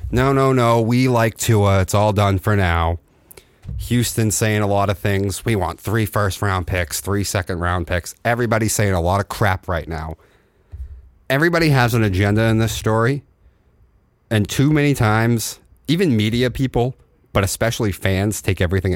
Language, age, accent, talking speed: English, 30-49, American, 170 wpm